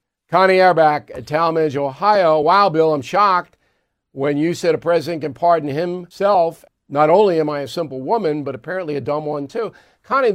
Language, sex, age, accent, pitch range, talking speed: English, male, 60-79, American, 140-180 Hz, 175 wpm